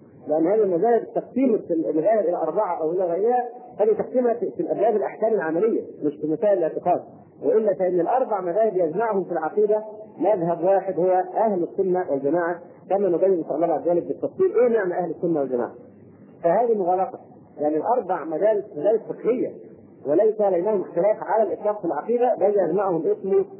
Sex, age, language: male, 40-59, Arabic